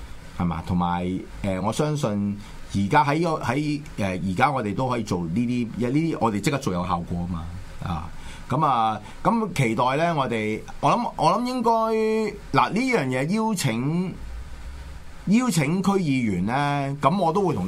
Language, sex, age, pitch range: Chinese, male, 30-49, 95-150 Hz